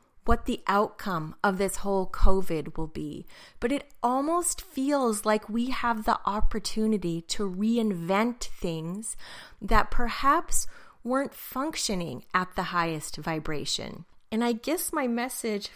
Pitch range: 170-215 Hz